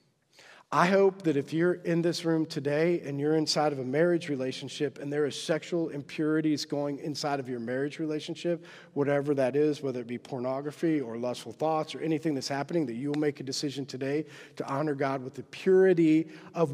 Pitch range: 145-185 Hz